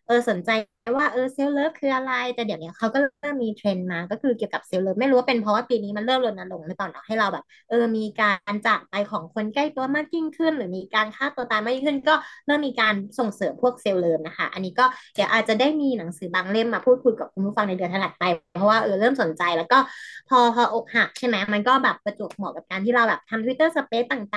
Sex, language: female, Thai